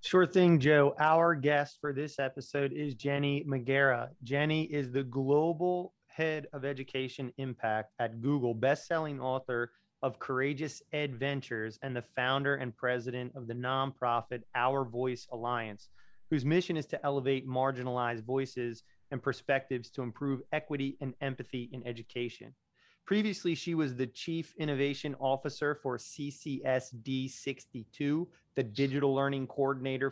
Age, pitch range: 30-49, 130-150 Hz